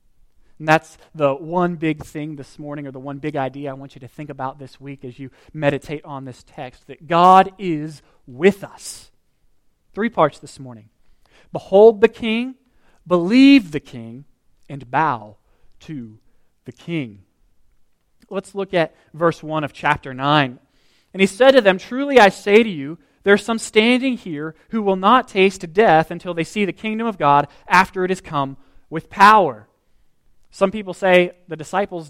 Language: English